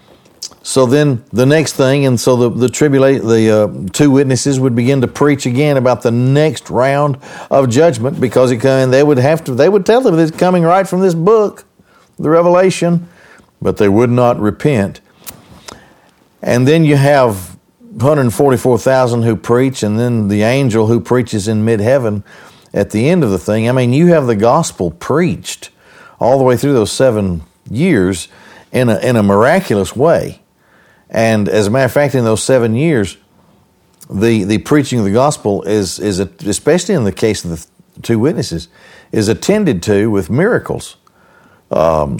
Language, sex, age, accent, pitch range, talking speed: English, male, 50-69, American, 105-140 Hz, 180 wpm